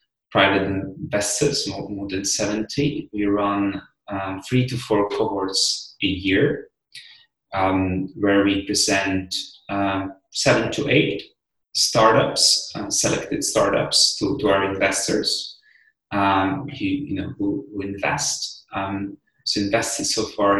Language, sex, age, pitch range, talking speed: English, male, 30-49, 100-125 Hz, 125 wpm